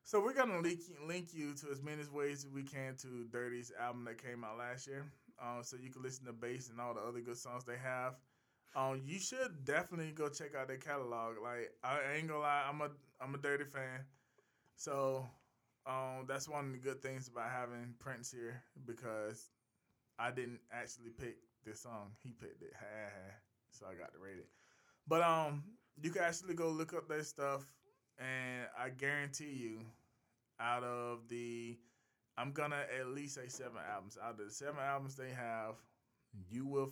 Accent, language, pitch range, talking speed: American, English, 120-140 Hz, 190 wpm